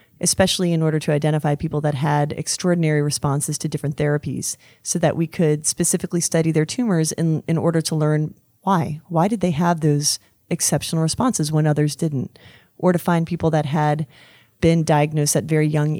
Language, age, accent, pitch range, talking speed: English, 30-49, American, 150-170 Hz, 180 wpm